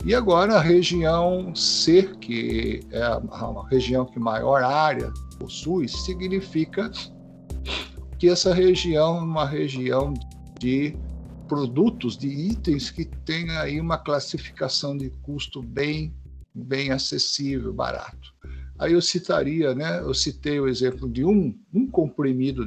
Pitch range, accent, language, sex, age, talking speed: 110-160 Hz, Brazilian, Portuguese, male, 60-79, 125 wpm